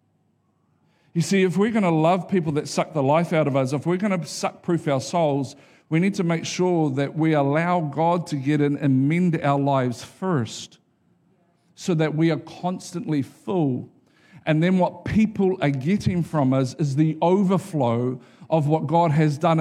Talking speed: 185 wpm